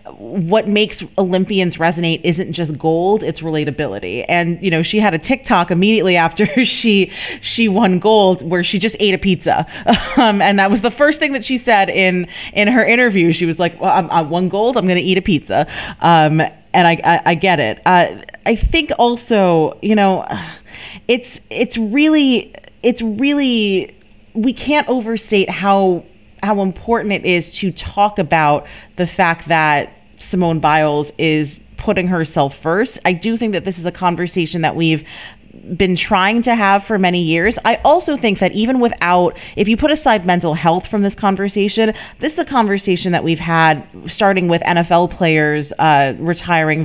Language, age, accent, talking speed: English, 30-49, American, 180 wpm